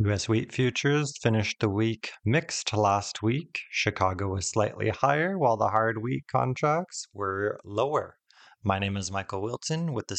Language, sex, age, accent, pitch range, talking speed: English, male, 20-39, American, 100-130 Hz, 160 wpm